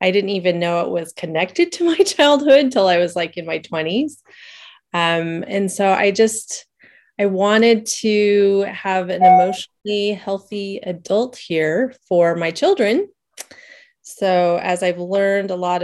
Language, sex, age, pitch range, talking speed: English, female, 30-49, 170-220 Hz, 150 wpm